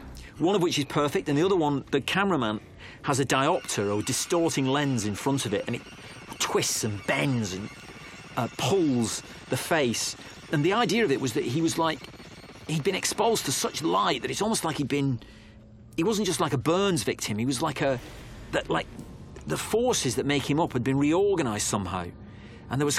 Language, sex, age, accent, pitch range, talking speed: English, male, 40-59, British, 115-150 Hz, 210 wpm